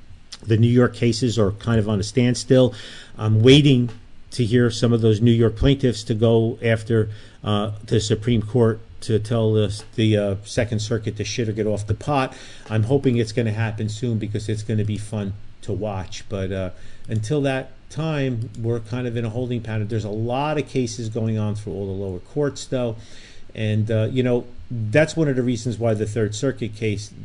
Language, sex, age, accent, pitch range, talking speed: English, male, 40-59, American, 105-125 Hz, 210 wpm